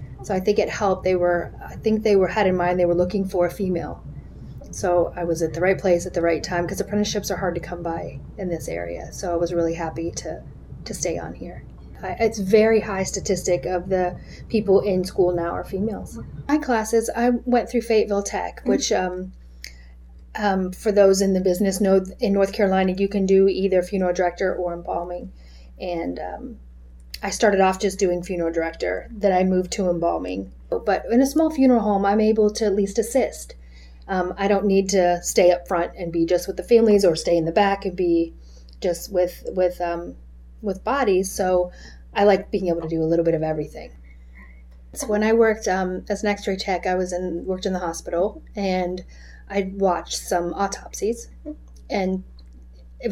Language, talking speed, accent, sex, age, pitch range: English, 200 wpm, American, female, 30-49, 170-200 Hz